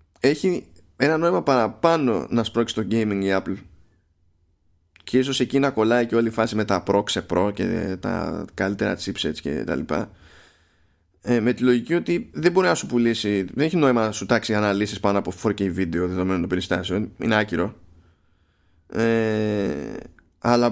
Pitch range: 90-125 Hz